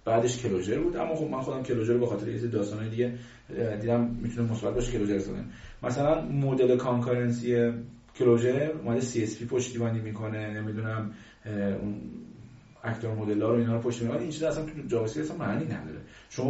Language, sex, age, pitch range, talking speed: Persian, male, 30-49, 115-145 Hz, 175 wpm